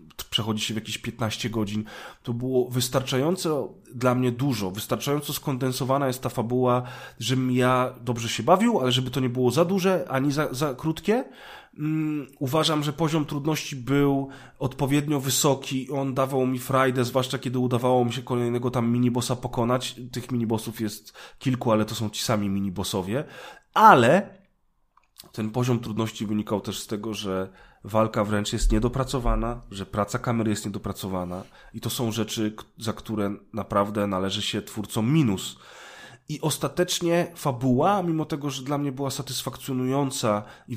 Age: 30-49